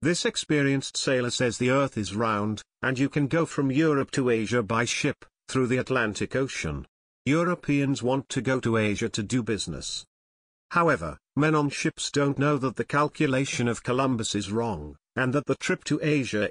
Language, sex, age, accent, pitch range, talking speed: Greek, male, 50-69, British, 110-140 Hz, 180 wpm